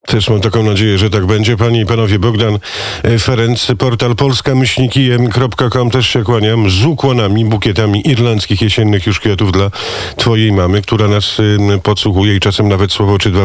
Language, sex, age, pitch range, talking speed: Polish, male, 50-69, 95-115 Hz, 160 wpm